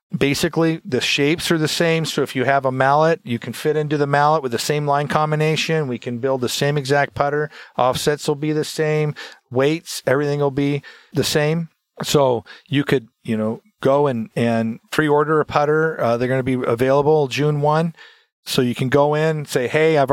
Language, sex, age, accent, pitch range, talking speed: English, male, 40-59, American, 130-155 Hz, 205 wpm